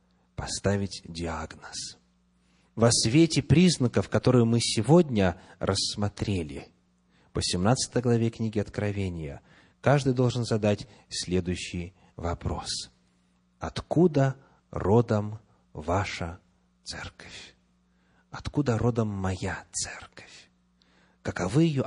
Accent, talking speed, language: native, 80 wpm, Russian